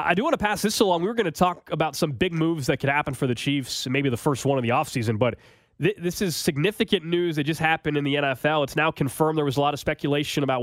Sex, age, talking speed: male, 20-39, 290 wpm